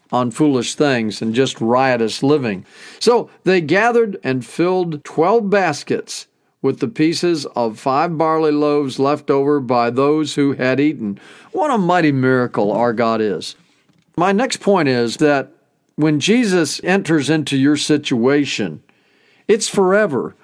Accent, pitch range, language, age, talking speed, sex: American, 135-190 Hz, English, 50-69, 140 wpm, male